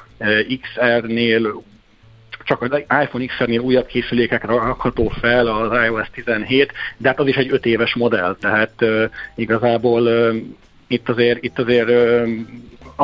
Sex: male